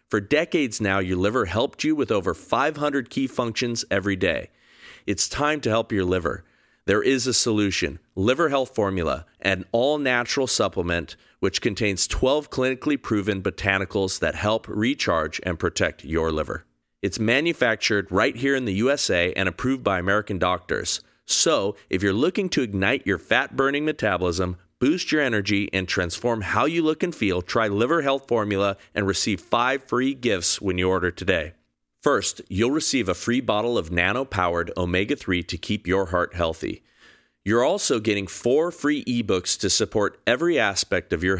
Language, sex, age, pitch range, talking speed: English, male, 40-59, 95-125 Hz, 165 wpm